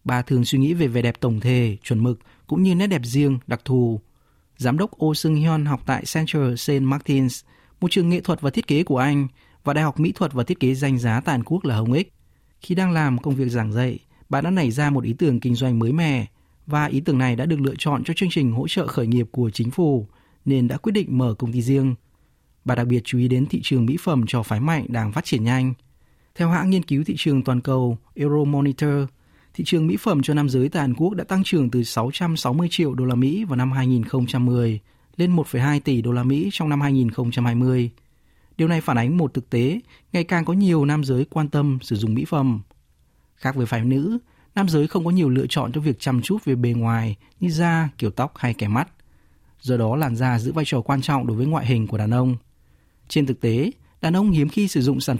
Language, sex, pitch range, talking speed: Vietnamese, male, 120-155 Hz, 240 wpm